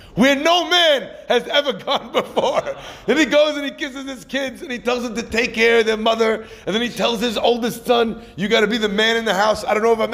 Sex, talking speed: male, 270 wpm